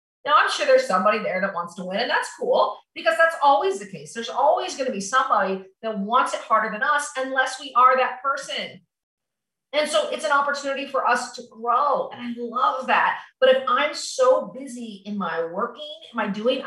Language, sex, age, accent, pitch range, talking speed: English, female, 40-59, American, 210-295 Hz, 210 wpm